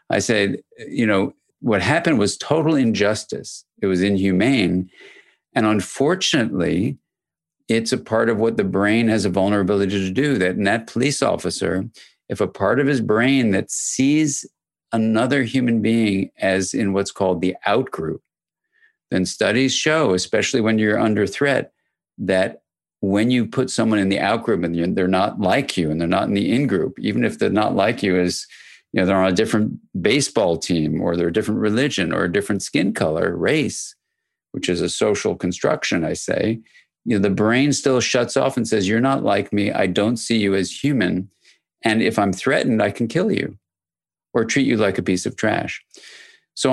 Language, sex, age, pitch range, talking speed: English, male, 50-69, 95-125 Hz, 185 wpm